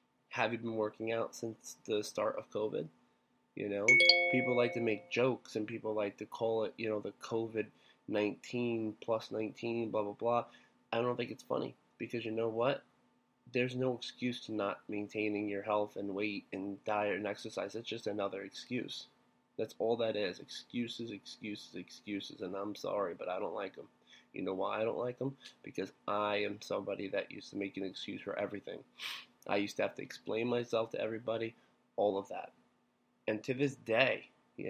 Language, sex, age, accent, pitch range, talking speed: English, male, 20-39, American, 105-120 Hz, 190 wpm